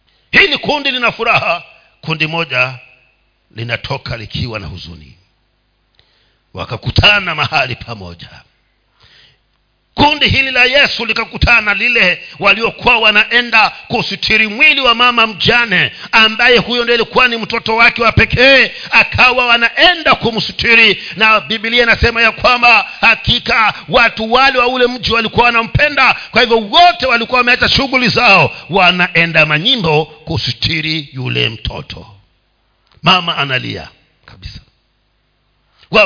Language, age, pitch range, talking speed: Swahili, 50-69, 175-250 Hz, 110 wpm